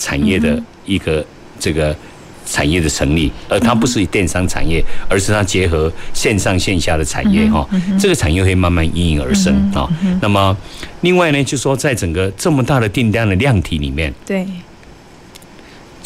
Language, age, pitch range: Chinese, 50-69, 85-135 Hz